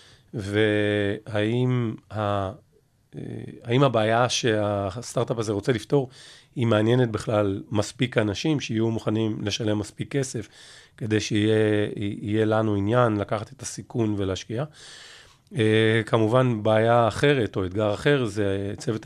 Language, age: Hebrew, 40-59